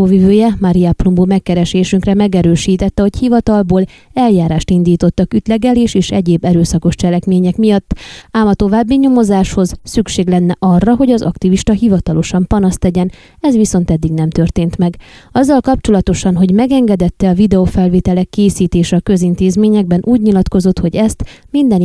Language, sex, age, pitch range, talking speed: Hungarian, female, 20-39, 180-225 Hz, 125 wpm